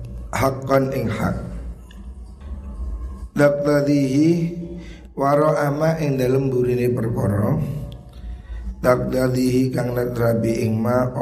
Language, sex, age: Indonesian, male, 50-69